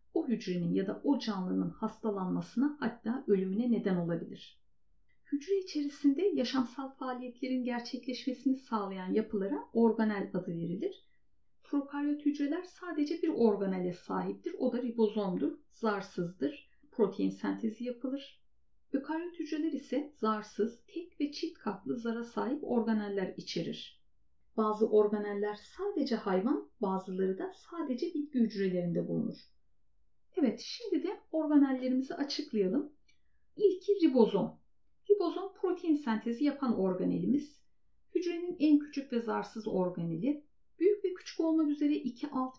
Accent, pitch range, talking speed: native, 215-315 Hz, 115 wpm